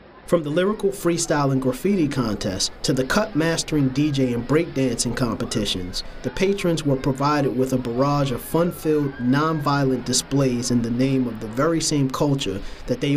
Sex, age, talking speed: male, 40-59, 160 wpm